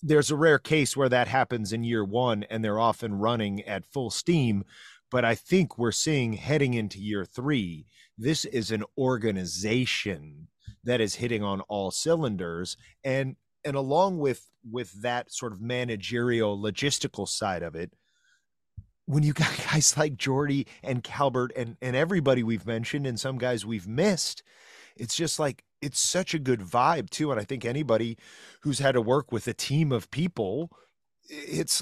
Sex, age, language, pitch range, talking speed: male, 30-49, English, 110-145 Hz, 170 wpm